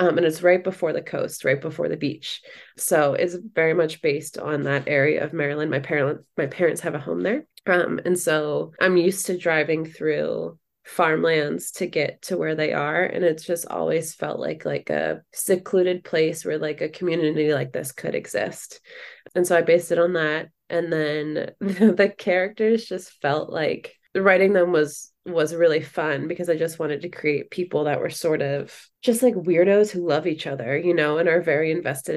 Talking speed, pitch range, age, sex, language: 200 wpm, 155-185 Hz, 20-39, female, English